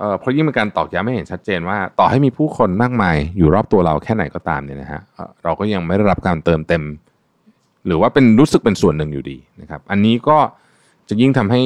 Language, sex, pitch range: Thai, male, 90-130 Hz